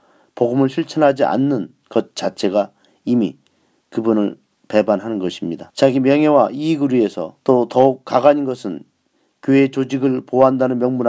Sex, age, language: male, 40-59, Korean